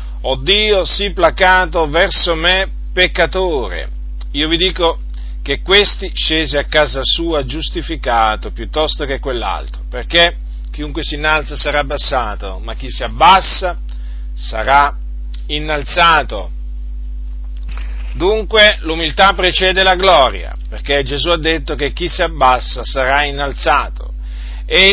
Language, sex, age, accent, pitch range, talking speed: Italian, male, 40-59, native, 125-170 Hz, 115 wpm